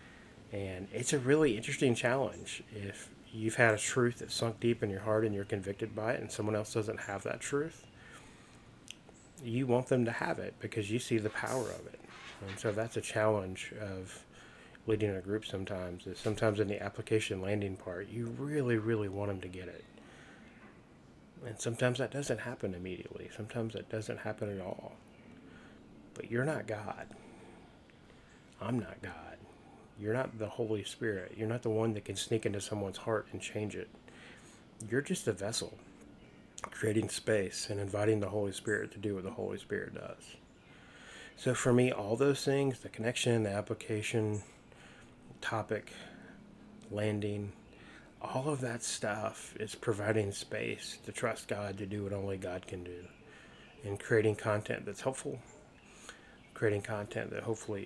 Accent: American